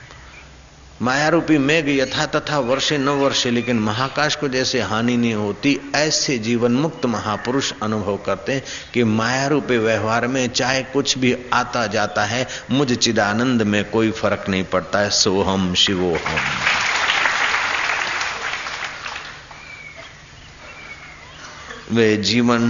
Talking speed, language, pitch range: 120 wpm, Hindi, 105-135 Hz